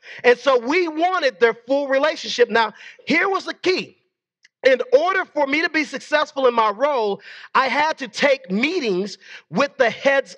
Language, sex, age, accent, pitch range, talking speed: English, male, 40-59, American, 230-295 Hz, 175 wpm